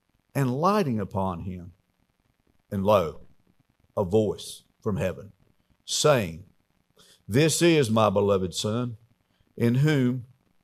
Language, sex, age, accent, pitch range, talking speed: English, male, 50-69, American, 120-160 Hz, 100 wpm